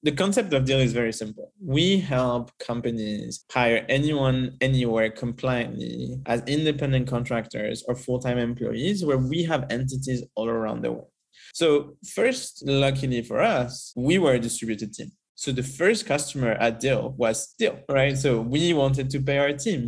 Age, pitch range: 20-39, 115-135 Hz